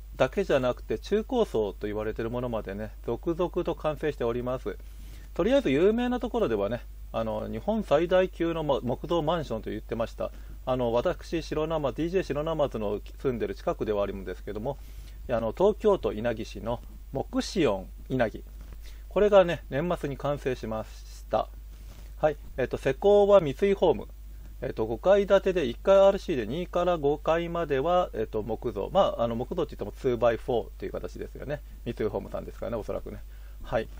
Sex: male